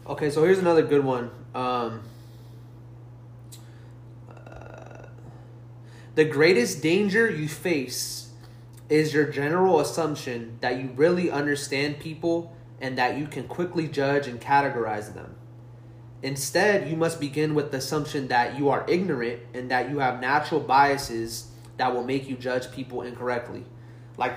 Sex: male